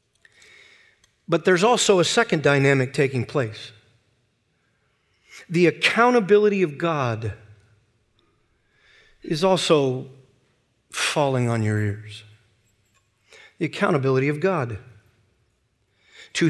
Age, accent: 50-69, American